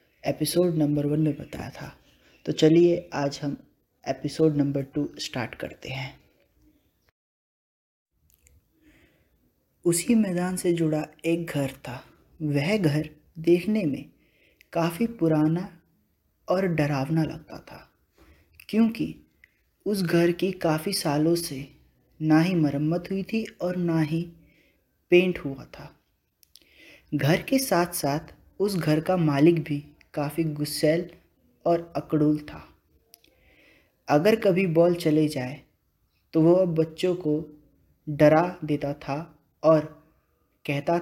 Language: Hindi